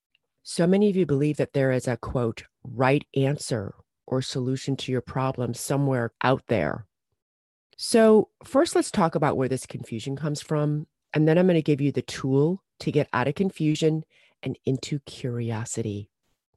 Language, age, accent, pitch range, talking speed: English, 40-59, American, 130-165 Hz, 170 wpm